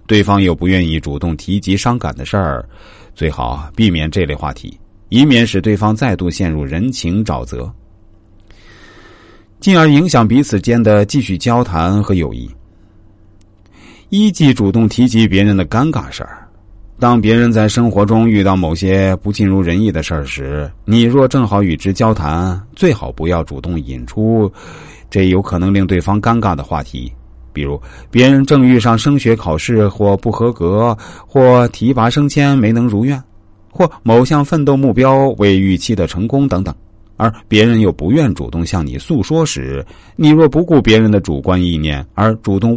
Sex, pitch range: male, 85-120 Hz